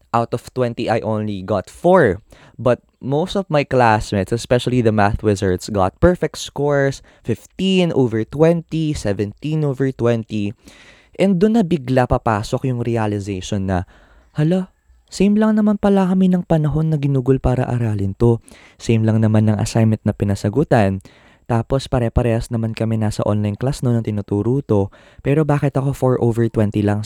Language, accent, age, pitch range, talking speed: Filipino, native, 20-39, 100-140 Hz, 155 wpm